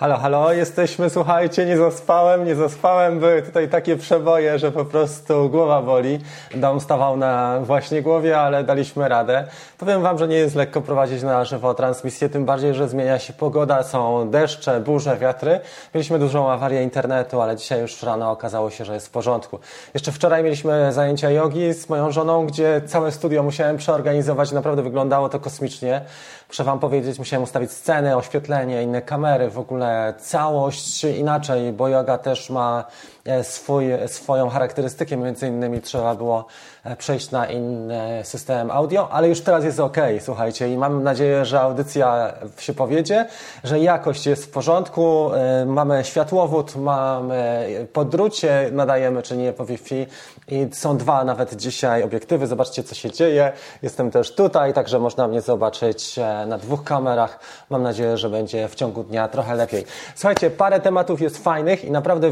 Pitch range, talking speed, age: 125-155 Hz, 165 wpm, 20-39